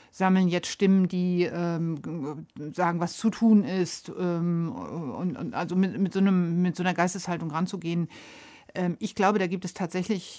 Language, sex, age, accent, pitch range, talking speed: German, female, 50-69, German, 170-195 Hz, 175 wpm